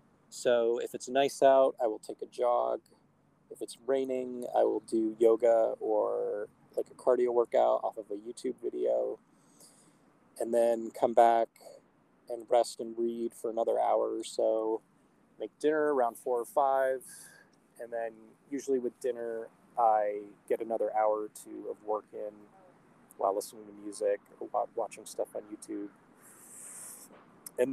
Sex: male